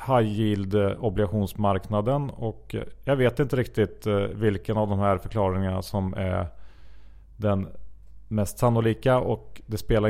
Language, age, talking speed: Swedish, 30-49, 125 wpm